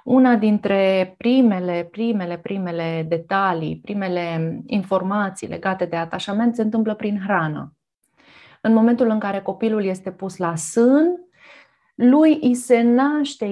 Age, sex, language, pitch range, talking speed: 30-49, female, Romanian, 185-230 Hz, 125 wpm